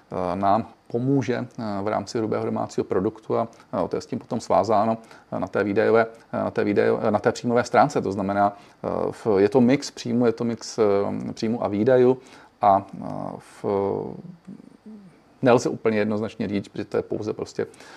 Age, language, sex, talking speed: 40-59, Czech, male, 165 wpm